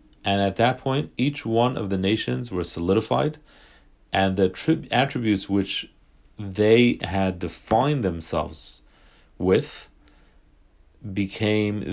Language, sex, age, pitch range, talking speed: English, male, 40-59, 90-115 Hz, 105 wpm